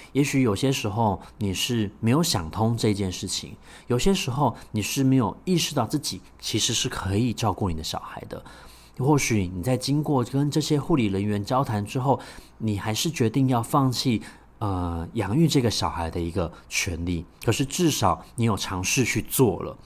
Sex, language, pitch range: male, Chinese, 100-140 Hz